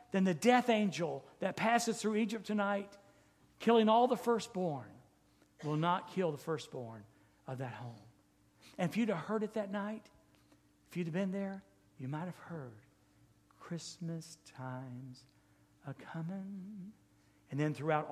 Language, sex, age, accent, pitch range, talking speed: English, male, 50-69, American, 160-230 Hz, 145 wpm